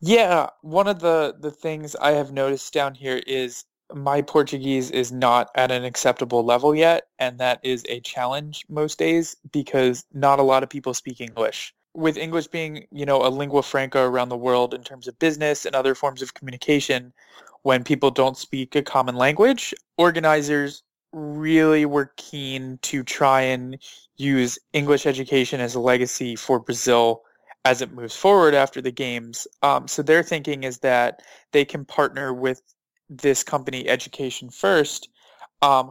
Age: 20-39